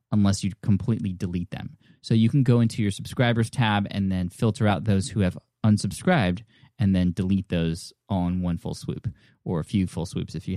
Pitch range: 95-125 Hz